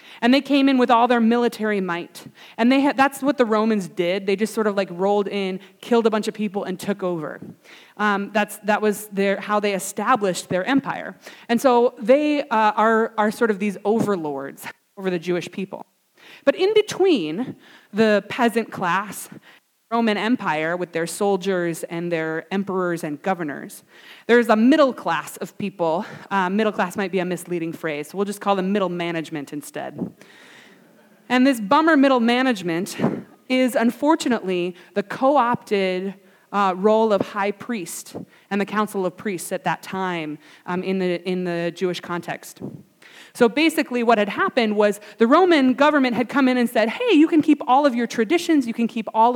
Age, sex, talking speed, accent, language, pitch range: 20-39, female, 180 wpm, American, English, 190-250 Hz